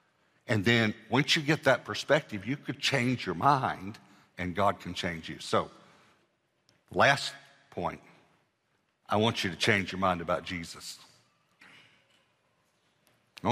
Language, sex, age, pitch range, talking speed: English, male, 60-79, 95-120 Hz, 135 wpm